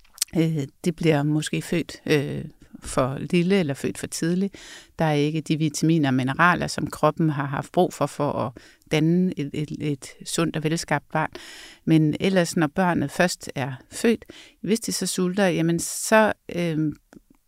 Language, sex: Danish, female